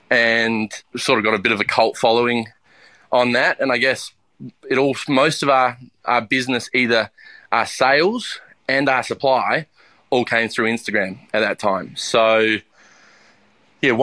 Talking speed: 160 wpm